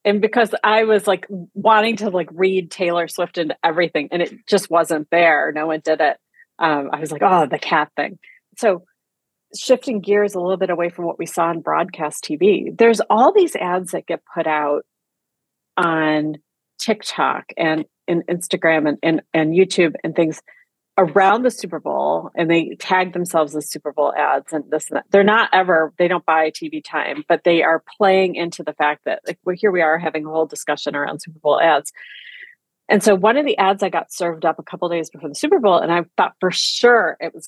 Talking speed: 215 wpm